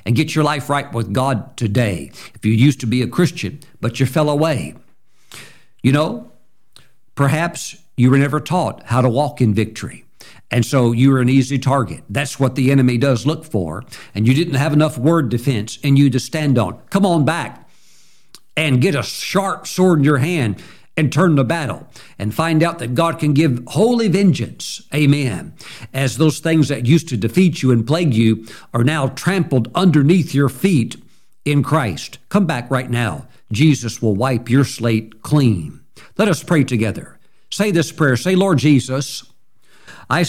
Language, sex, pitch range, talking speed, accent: English, male, 120-155 Hz, 180 wpm, American